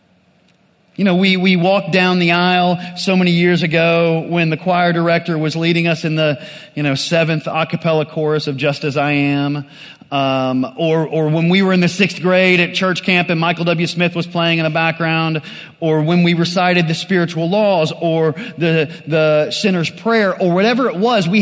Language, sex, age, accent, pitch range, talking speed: English, male, 30-49, American, 155-190 Hz, 200 wpm